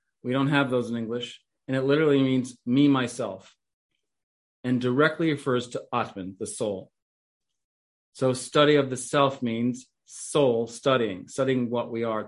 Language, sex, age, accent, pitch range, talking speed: English, male, 40-59, American, 120-145 Hz, 155 wpm